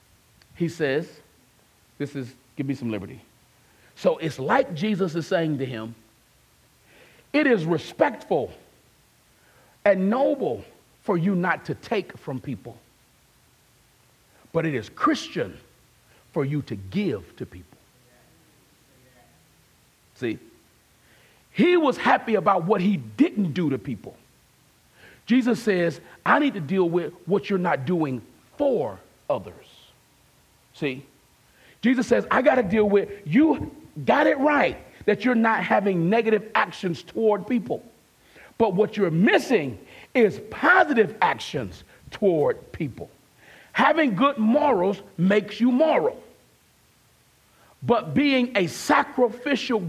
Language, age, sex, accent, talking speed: English, 40-59, male, American, 120 wpm